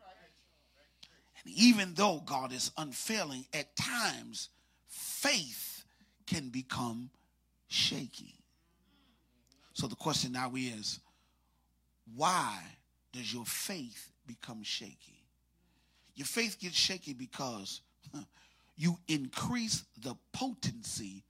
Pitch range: 100-155 Hz